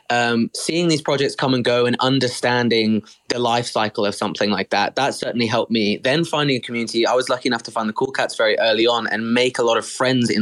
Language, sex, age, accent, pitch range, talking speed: English, male, 20-39, British, 115-130 Hz, 250 wpm